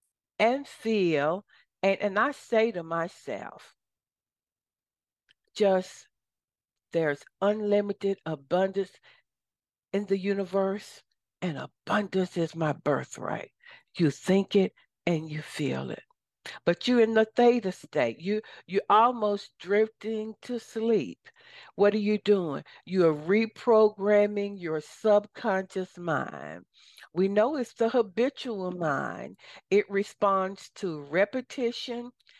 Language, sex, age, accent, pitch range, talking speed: English, female, 60-79, American, 170-215 Hz, 105 wpm